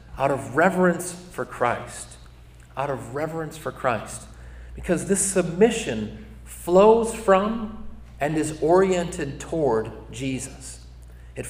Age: 40-59